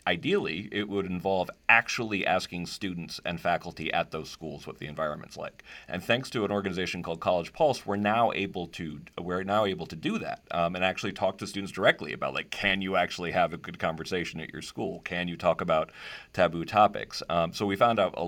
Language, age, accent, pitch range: English, 40-59, American, 85-100 Hz